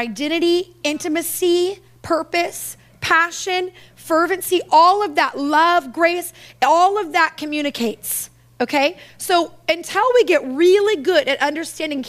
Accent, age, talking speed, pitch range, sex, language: American, 30-49, 115 wpm, 265-350 Hz, female, English